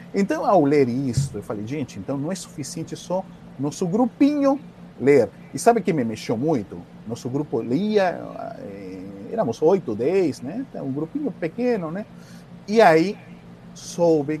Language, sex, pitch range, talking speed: English, male, 135-200 Hz, 165 wpm